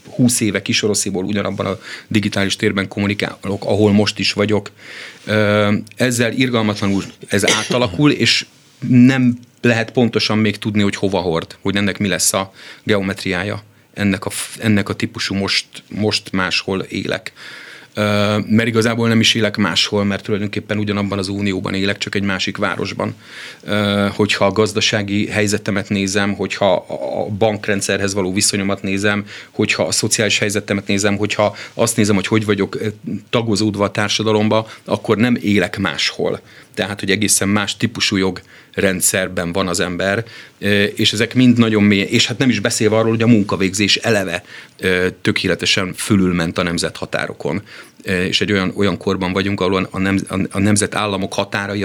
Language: Hungarian